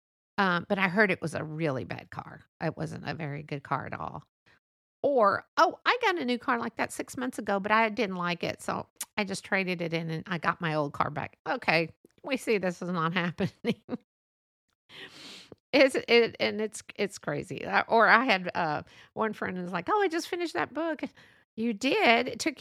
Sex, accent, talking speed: female, American, 210 wpm